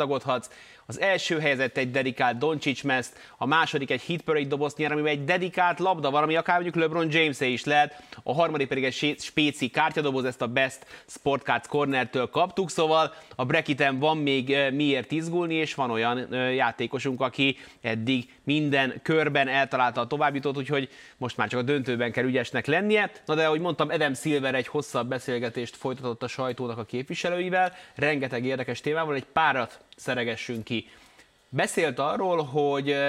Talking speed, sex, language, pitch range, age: 155 wpm, male, Hungarian, 125-155 Hz, 30-49